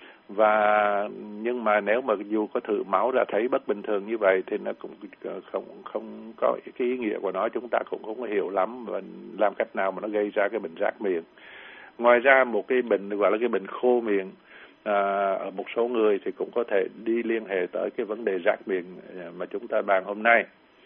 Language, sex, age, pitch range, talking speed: Vietnamese, male, 60-79, 100-125 Hz, 225 wpm